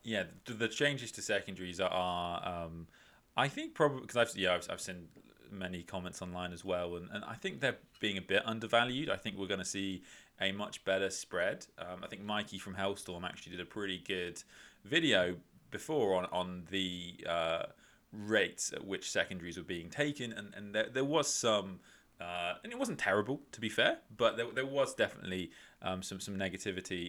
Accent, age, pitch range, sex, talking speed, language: British, 20-39, 90-110 Hz, male, 195 wpm, English